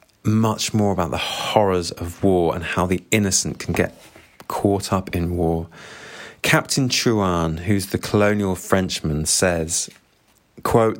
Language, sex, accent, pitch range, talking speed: English, male, British, 90-110 Hz, 135 wpm